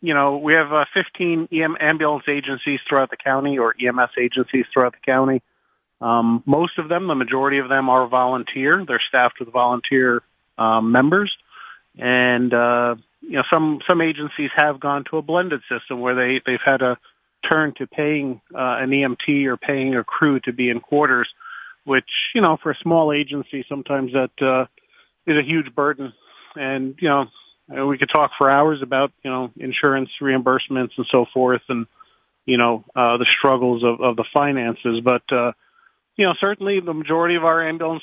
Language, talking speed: English, 185 wpm